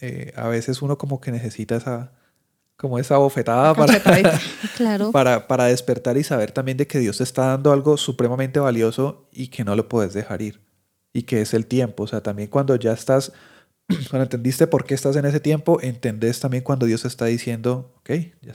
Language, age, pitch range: Spanish, 30-49, 115-140 Hz